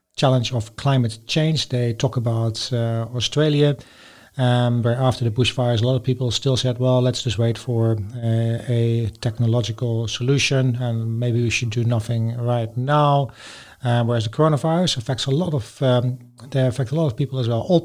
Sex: male